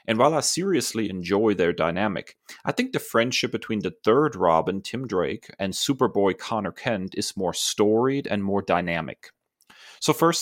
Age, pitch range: 30-49, 90-120 Hz